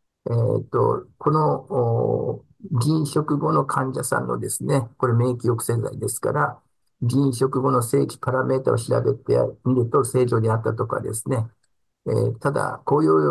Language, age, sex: Japanese, 50-69, male